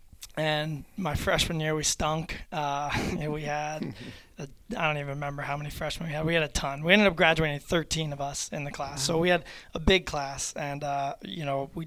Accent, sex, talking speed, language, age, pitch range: American, male, 220 wpm, English, 20-39, 145-155 Hz